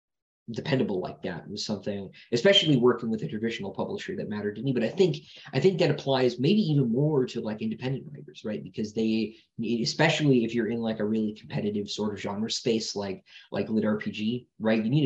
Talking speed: 205 wpm